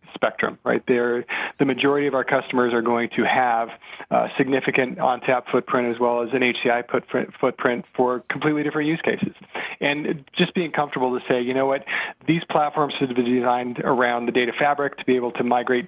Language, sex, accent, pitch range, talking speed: English, male, American, 125-145 Hz, 195 wpm